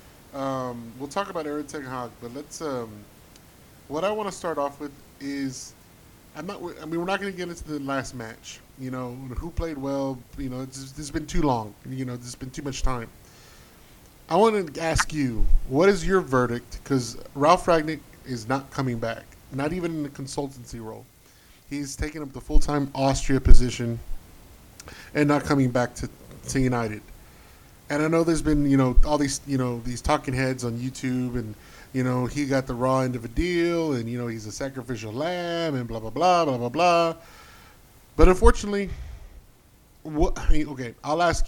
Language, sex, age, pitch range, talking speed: English, male, 20-39, 120-150 Hz, 190 wpm